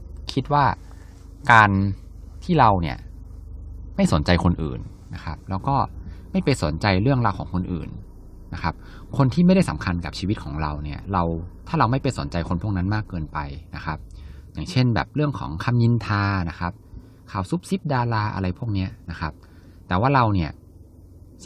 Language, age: Thai, 20-39